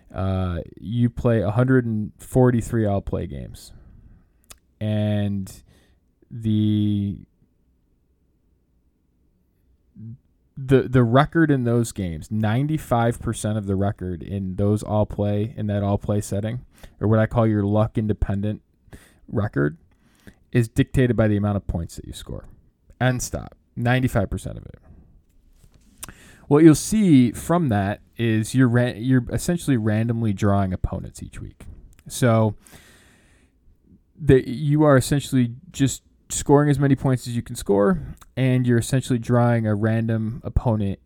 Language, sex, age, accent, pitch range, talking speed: English, male, 20-39, American, 95-125 Hz, 125 wpm